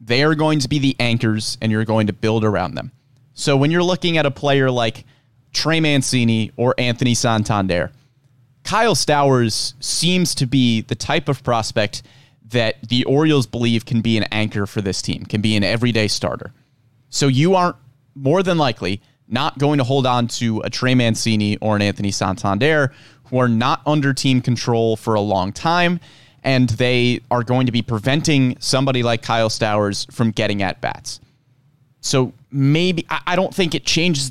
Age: 30-49